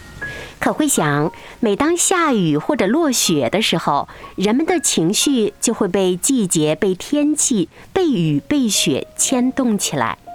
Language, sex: Chinese, female